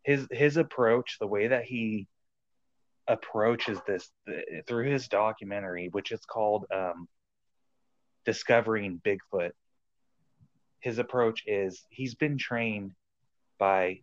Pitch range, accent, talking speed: 90-110 Hz, American, 110 wpm